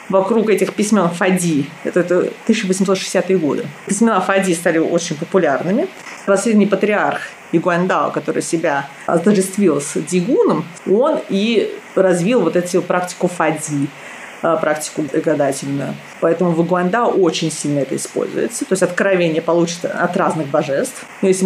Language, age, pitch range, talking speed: Russian, 30-49, 160-200 Hz, 125 wpm